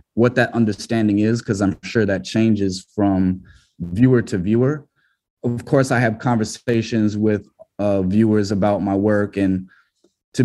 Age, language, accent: 20-39, English, American